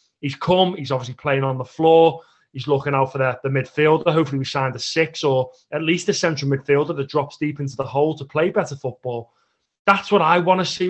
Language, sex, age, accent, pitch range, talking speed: English, male, 30-49, British, 140-175 Hz, 230 wpm